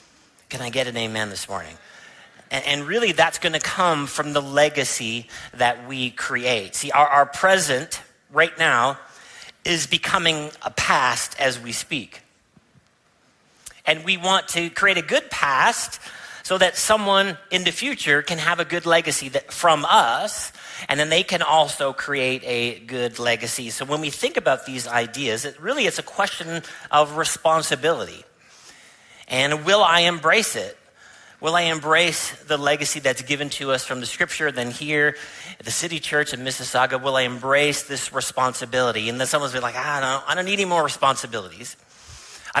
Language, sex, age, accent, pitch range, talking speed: English, male, 40-59, American, 130-170 Hz, 170 wpm